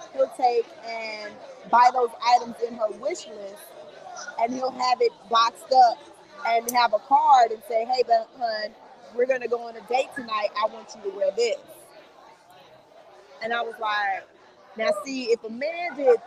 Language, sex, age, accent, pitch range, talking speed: English, female, 20-39, American, 225-315 Hz, 175 wpm